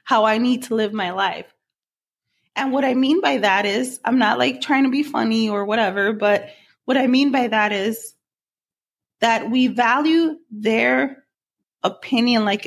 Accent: American